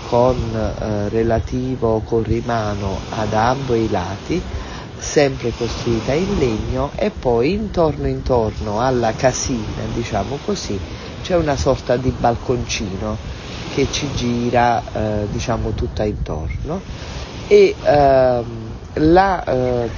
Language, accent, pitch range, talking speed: Italian, native, 105-125 Hz, 110 wpm